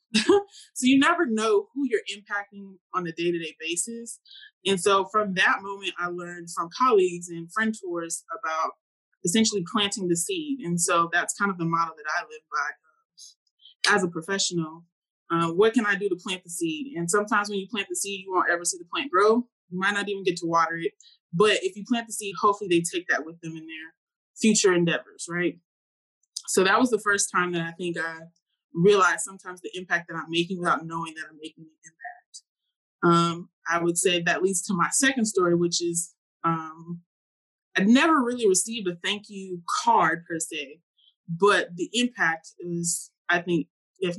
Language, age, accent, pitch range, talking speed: English, 20-39, American, 170-215 Hz, 195 wpm